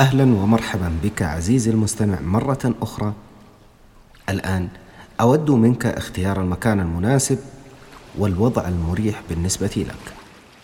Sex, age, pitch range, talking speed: male, 40-59, 95-120 Hz, 95 wpm